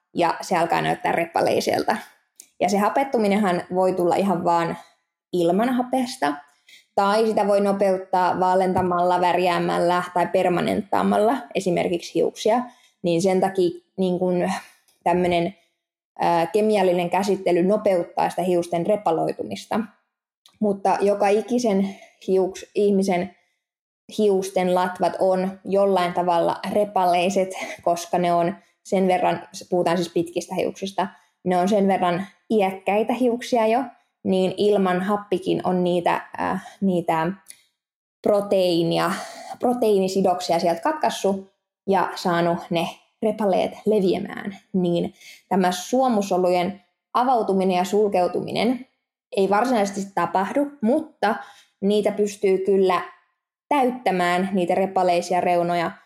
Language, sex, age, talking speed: Finnish, female, 20-39, 100 wpm